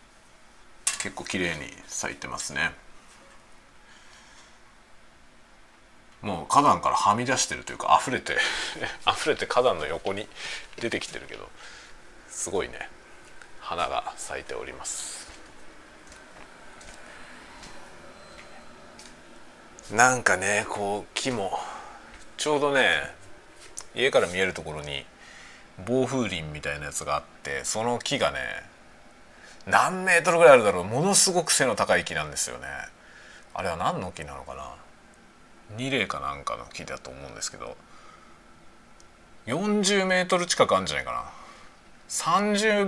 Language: Japanese